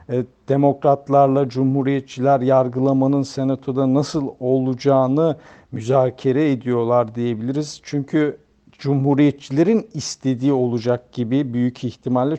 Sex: male